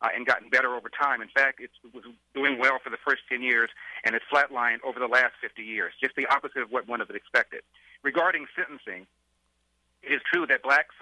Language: English